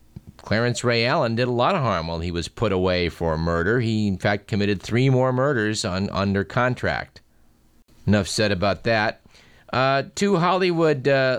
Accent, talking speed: American, 175 wpm